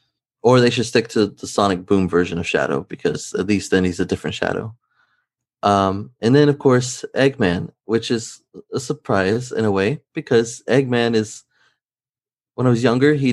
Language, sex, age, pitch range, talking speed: English, male, 20-39, 100-130 Hz, 180 wpm